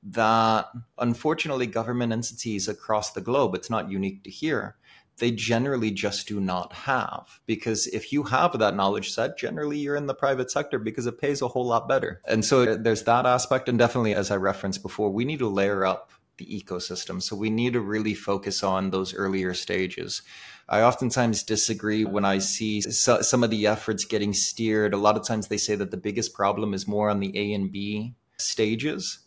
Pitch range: 100-120 Hz